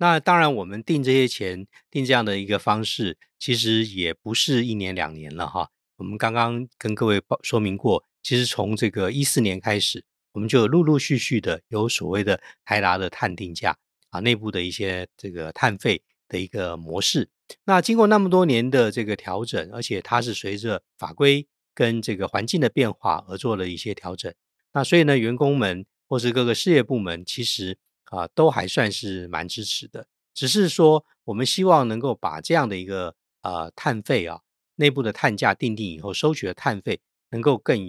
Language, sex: Chinese, male